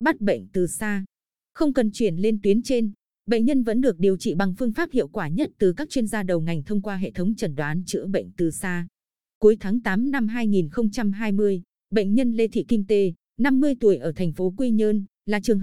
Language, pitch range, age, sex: Vietnamese, 185-230 Hz, 20-39, female